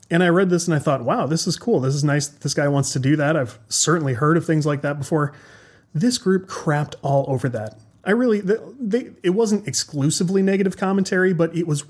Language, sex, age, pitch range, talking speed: English, male, 30-49, 140-185 Hz, 230 wpm